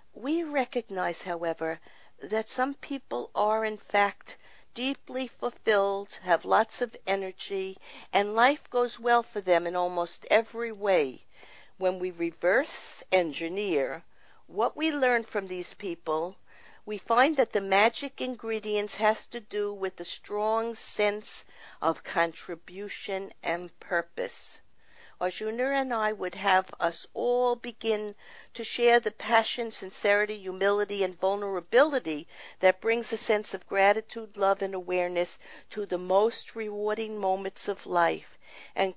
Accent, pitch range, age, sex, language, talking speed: American, 180-230 Hz, 50-69, female, English, 130 wpm